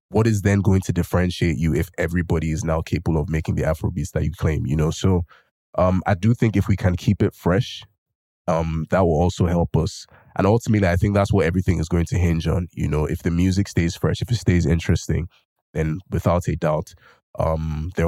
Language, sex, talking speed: English, male, 220 wpm